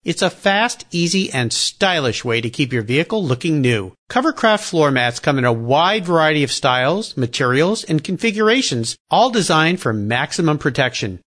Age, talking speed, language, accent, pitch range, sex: 50-69, 165 wpm, English, American, 125-205 Hz, male